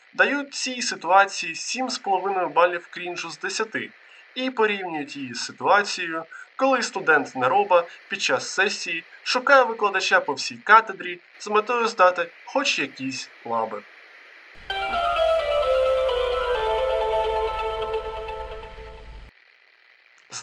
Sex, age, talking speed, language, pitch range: male, 20-39, 90 wpm, Ukrainian, 160-260 Hz